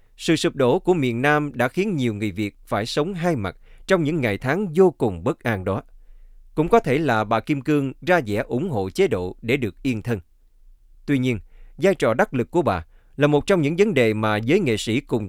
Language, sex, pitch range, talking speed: Vietnamese, male, 105-155 Hz, 235 wpm